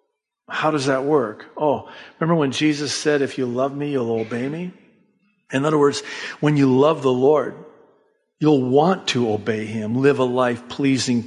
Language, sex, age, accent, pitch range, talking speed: English, male, 50-69, American, 130-150 Hz, 175 wpm